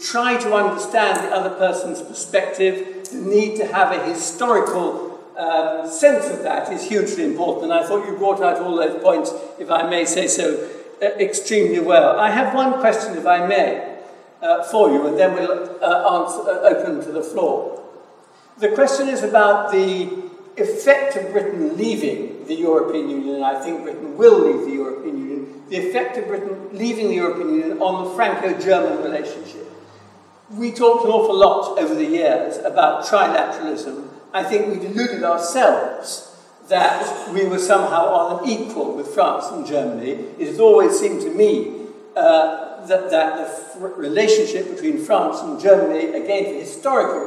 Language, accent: English, British